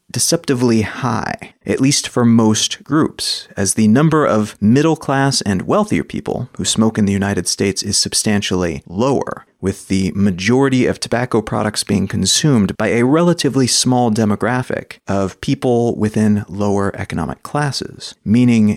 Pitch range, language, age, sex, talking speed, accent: 105-135 Hz, English, 30-49, male, 140 wpm, American